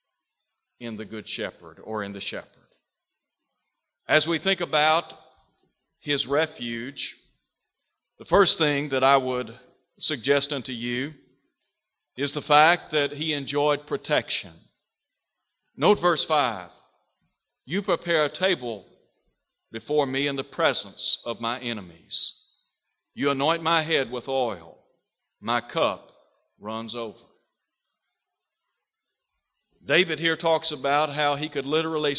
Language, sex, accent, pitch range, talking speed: English, male, American, 130-170 Hz, 115 wpm